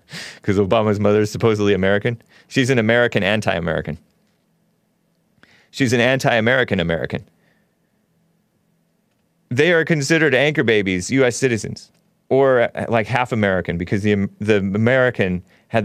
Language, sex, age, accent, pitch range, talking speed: English, male, 30-49, American, 105-165 Hz, 115 wpm